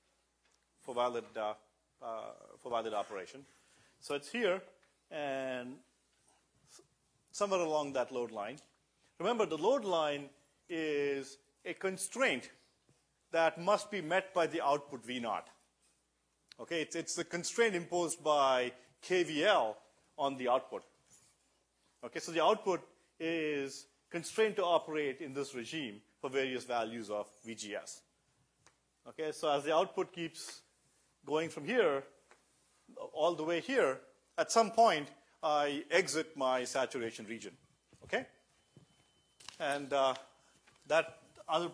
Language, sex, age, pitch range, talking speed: English, male, 40-59, 125-165 Hz, 120 wpm